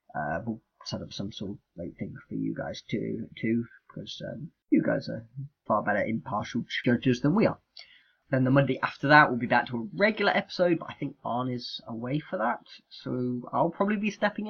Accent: British